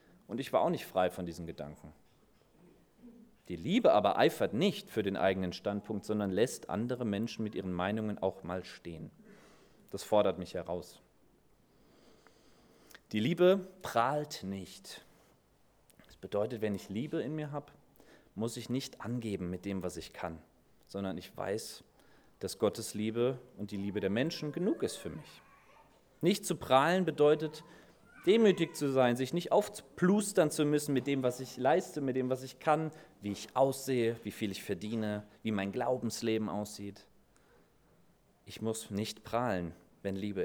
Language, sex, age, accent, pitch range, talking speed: German, male, 30-49, German, 100-150 Hz, 160 wpm